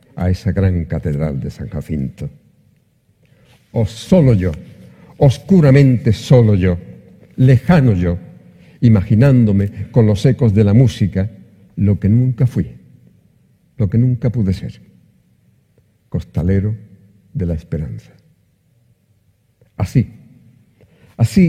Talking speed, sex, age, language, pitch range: 105 wpm, male, 50-69, Spanish, 95-125 Hz